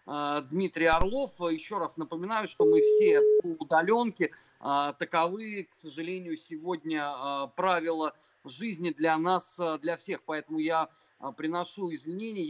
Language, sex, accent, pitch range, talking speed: Russian, male, native, 155-205 Hz, 110 wpm